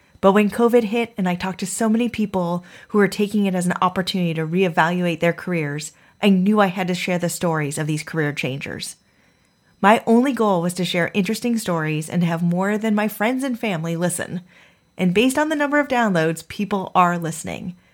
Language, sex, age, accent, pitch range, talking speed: English, female, 30-49, American, 175-220 Hz, 205 wpm